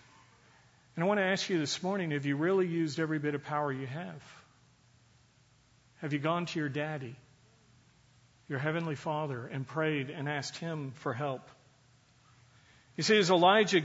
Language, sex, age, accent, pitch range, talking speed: English, male, 50-69, American, 135-180 Hz, 165 wpm